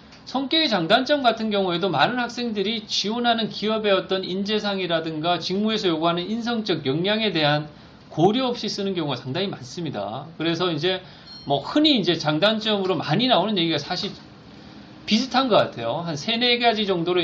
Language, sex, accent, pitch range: Korean, male, native, 155-215 Hz